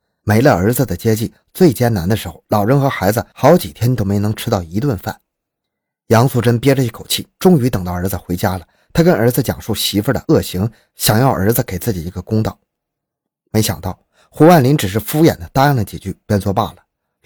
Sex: male